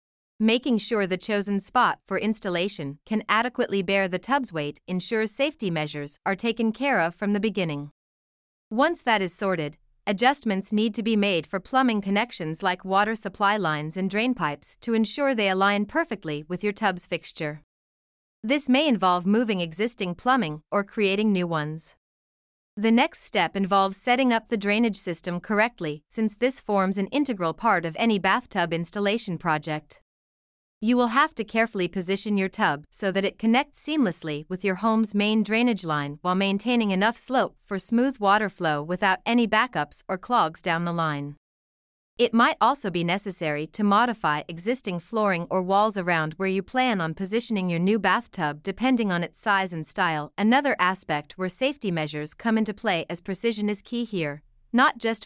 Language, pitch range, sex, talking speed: English, 175-225 Hz, female, 170 wpm